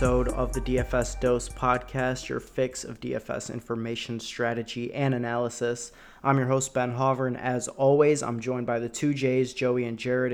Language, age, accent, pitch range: English, 20-39, American, 115-130 Hz